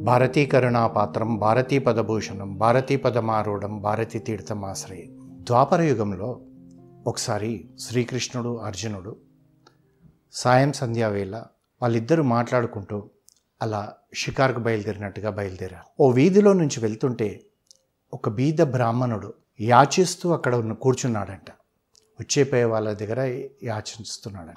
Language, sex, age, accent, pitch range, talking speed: Telugu, male, 60-79, native, 110-140 Hz, 90 wpm